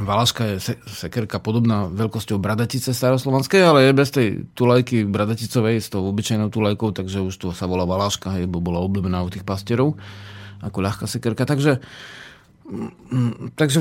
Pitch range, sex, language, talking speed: 105-130 Hz, male, Slovak, 150 wpm